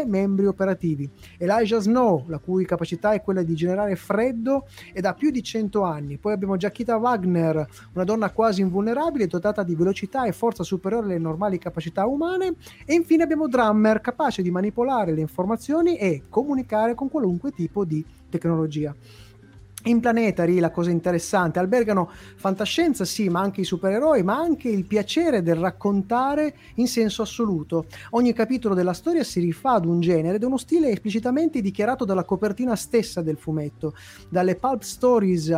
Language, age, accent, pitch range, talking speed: Italian, 30-49, native, 170-235 Hz, 160 wpm